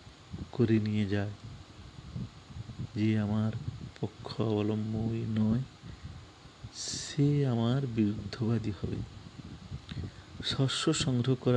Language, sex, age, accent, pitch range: Bengali, male, 50-69, native, 105-125 Hz